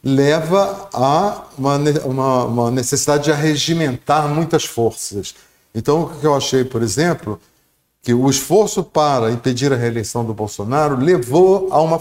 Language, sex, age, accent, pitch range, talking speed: Portuguese, male, 50-69, Brazilian, 110-150 Hz, 145 wpm